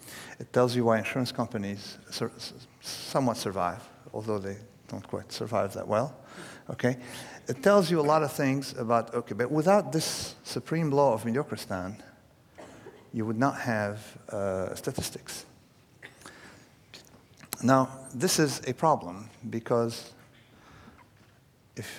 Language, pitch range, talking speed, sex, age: English, 105-130 Hz, 125 wpm, male, 50-69